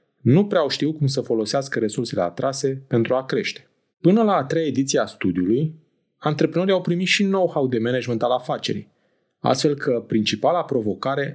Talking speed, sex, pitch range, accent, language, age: 165 wpm, male, 110-150 Hz, native, Romanian, 30-49